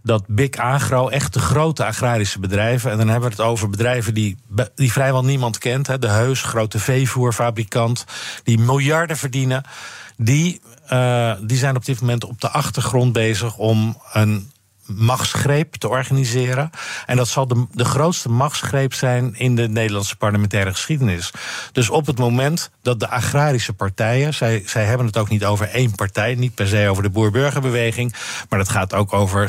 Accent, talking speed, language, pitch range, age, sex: Dutch, 175 wpm, Dutch, 110-135 Hz, 50-69, male